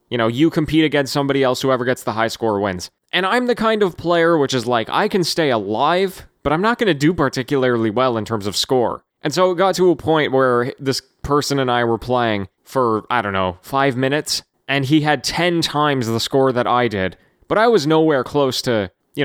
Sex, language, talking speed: male, English, 235 wpm